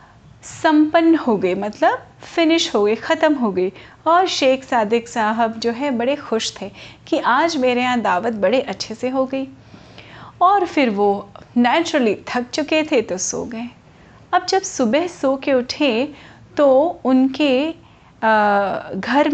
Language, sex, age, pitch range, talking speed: Hindi, female, 30-49, 220-285 Hz, 150 wpm